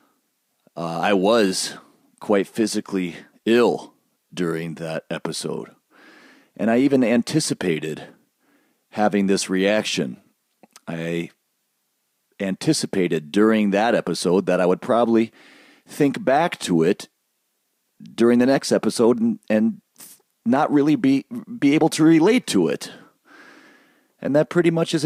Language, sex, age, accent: English, male, 40-59, American